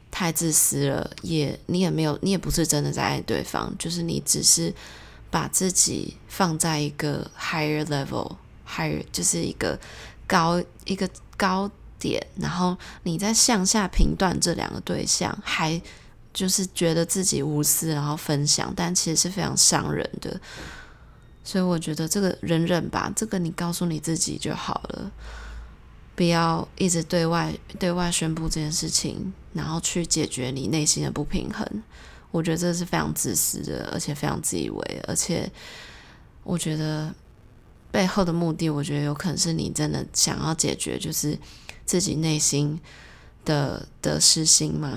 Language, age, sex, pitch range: Chinese, 20-39, female, 155-180 Hz